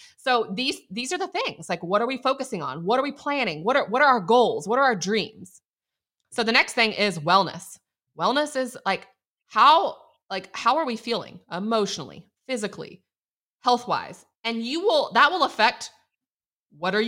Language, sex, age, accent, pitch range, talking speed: English, female, 20-39, American, 185-245 Hz, 185 wpm